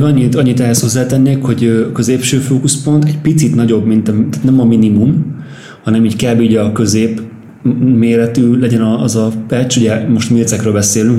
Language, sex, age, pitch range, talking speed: Hungarian, male, 30-49, 110-130 Hz, 165 wpm